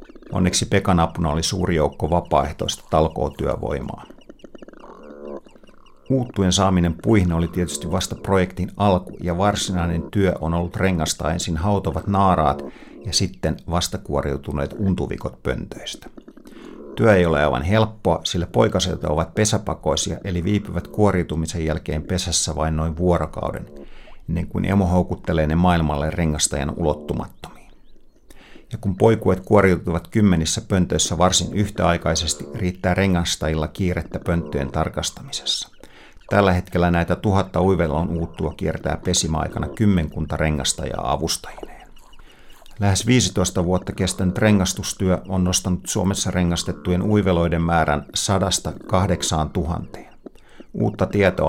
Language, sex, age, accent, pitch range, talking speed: Finnish, male, 50-69, native, 80-95 Hz, 110 wpm